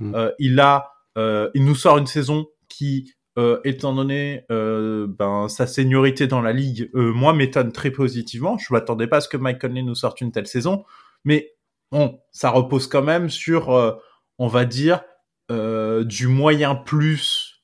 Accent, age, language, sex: French, 20-39, French, male